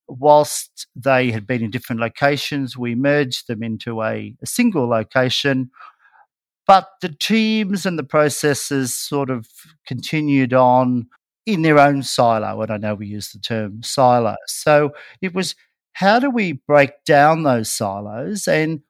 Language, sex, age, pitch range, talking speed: English, male, 50-69, 120-140 Hz, 150 wpm